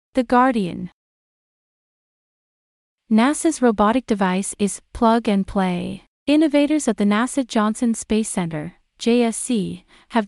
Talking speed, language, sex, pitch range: 105 wpm, English, female, 200-245 Hz